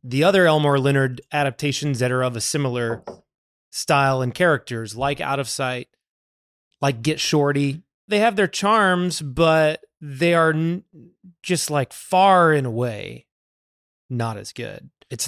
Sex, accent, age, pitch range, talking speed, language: male, American, 20-39, 135-175 Hz, 145 wpm, English